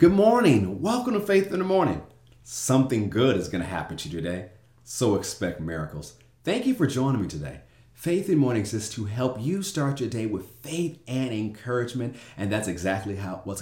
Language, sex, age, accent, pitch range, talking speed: English, male, 30-49, American, 95-125 Hz, 205 wpm